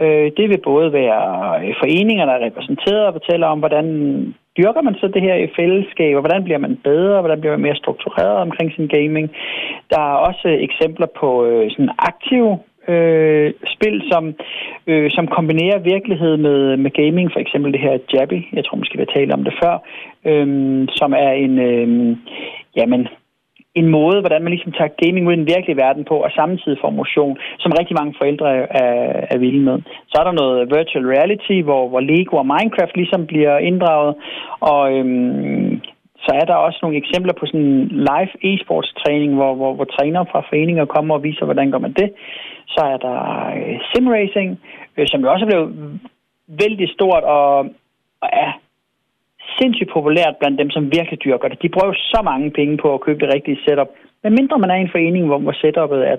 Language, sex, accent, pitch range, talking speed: Danish, male, native, 145-180 Hz, 190 wpm